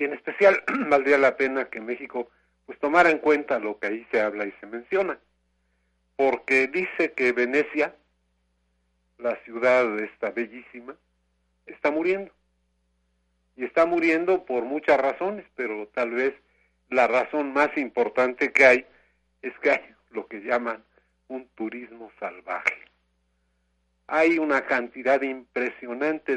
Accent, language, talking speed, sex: Mexican, Spanish, 130 wpm, male